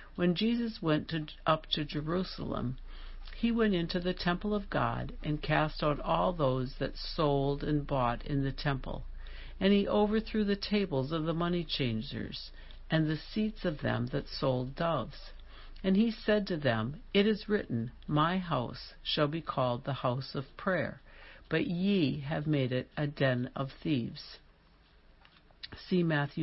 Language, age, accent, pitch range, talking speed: English, 60-79, American, 135-175 Hz, 160 wpm